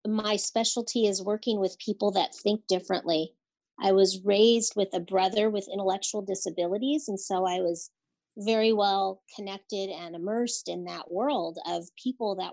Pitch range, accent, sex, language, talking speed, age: 185-230 Hz, American, female, English, 160 wpm, 40-59